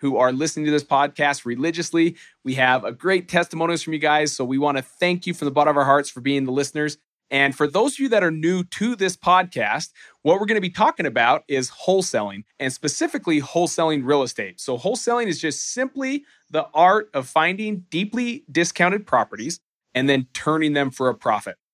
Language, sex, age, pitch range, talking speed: English, male, 40-59, 135-180 Hz, 205 wpm